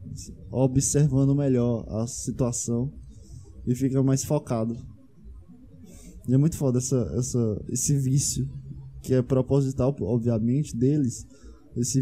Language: Portuguese